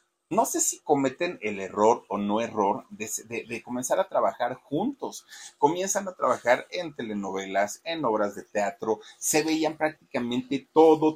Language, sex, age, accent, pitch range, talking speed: Spanish, male, 40-59, Mexican, 105-150 Hz, 155 wpm